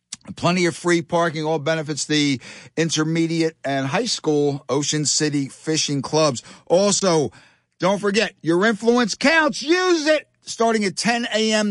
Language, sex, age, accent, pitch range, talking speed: English, male, 50-69, American, 150-195 Hz, 140 wpm